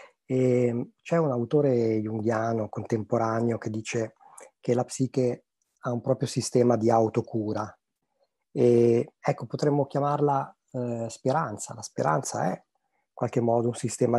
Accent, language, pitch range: native, Italian, 110-125 Hz